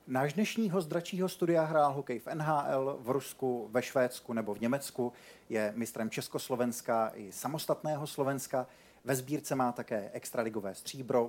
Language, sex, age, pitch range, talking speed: Czech, male, 40-59, 115-135 Hz, 145 wpm